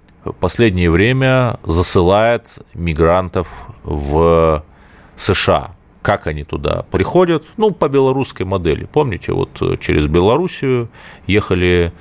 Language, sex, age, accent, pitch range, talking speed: Russian, male, 30-49, native, 80-115 Hz, 95 wpm